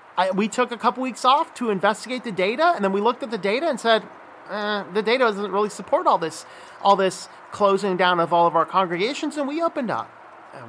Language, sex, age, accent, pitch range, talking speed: English, male, 40-59, American, 175-240 Hz, 235 wpm